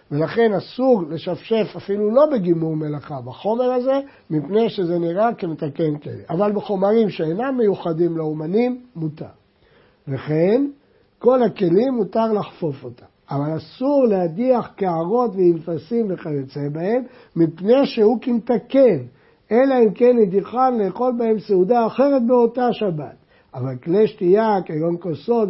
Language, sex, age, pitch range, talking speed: Hebrew, male, 60-79, 165-230 Hz, 120 wpm